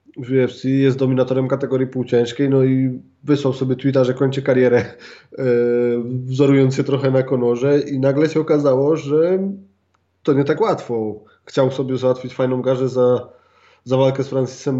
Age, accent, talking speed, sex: 20-39, native, 160 wpm, male